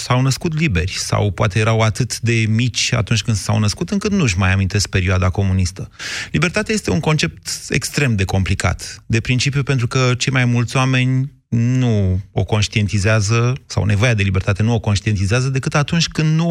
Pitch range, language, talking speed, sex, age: 100-125 Hz, Romanian, 175 wpm, male, 30-49